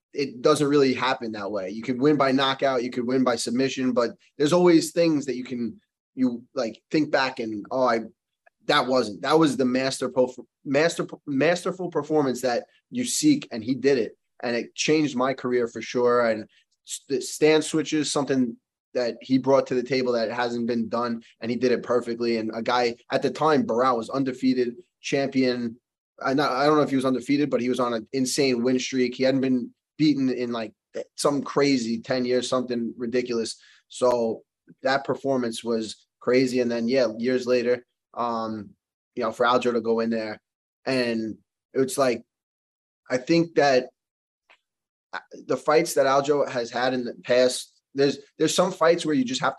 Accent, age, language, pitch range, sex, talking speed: American, 20-39, English, 120-145 Hz, male, 185 wpm